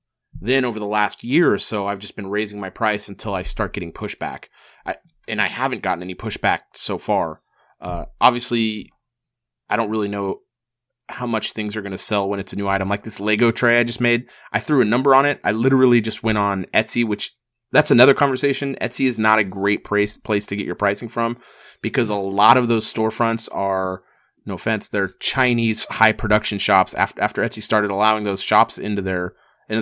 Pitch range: 100-120 Hz